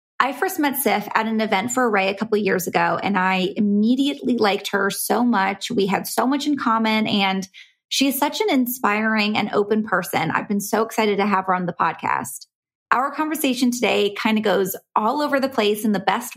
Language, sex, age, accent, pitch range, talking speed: English, female, 20-39, American, 205-245 Hz, 215 wpm